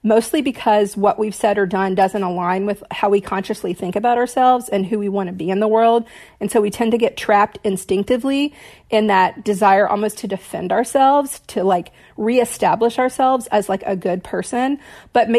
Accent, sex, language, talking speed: American, female, English, 195 wpm